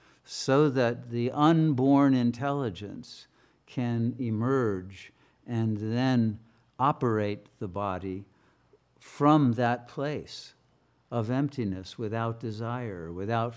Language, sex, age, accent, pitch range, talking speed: English, male, 60-79, American, 110-135 Hz, 90 wpm